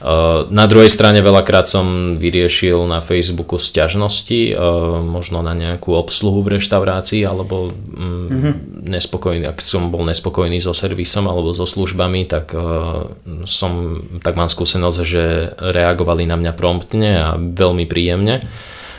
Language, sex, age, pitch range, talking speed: Slovak, male, 20-39, 85-95 Hz, 125 wpm